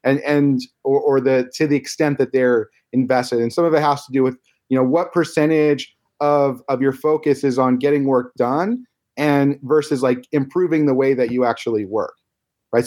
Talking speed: 200 wpm